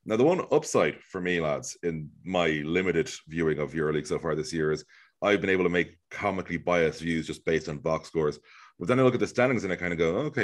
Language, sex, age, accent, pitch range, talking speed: English, male, 30-49, Irish, 80-100 Hz, 255 wpm